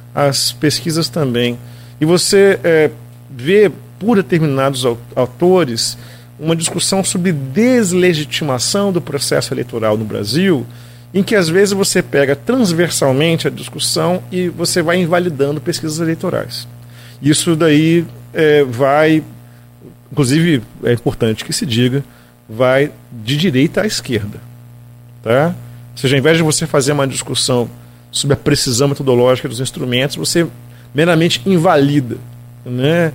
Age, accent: 40-59, Brazilian